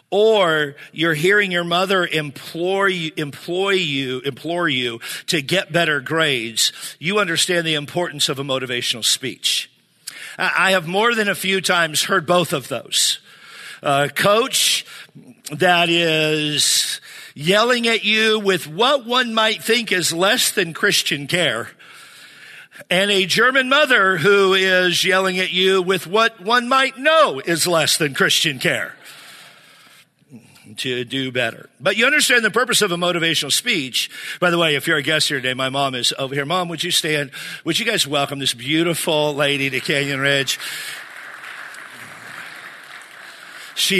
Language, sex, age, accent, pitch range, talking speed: English, male, 50-69, American, 145-195 Hz, 150 wpm